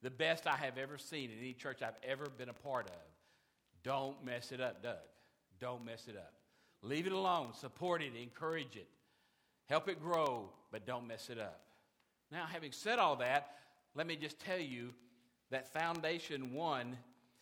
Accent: American